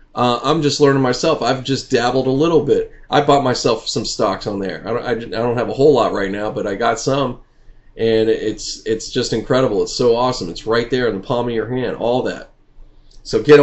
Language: English